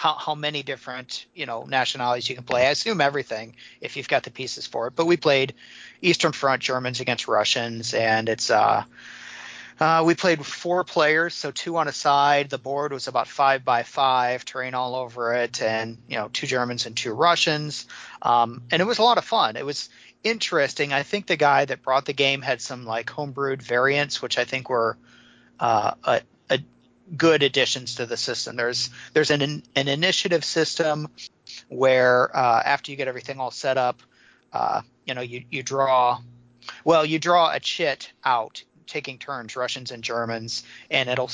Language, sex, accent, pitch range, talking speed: English, male, American, 125-145 Hz, 190 wpm